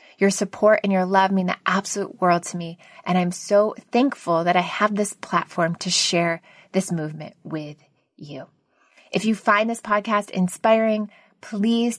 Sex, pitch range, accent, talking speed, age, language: female, 180-210 Hz, American, 165 wpm, 20-39, English